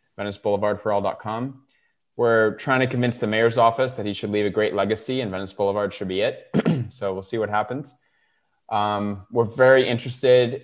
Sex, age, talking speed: male, 20-39, 185 wpm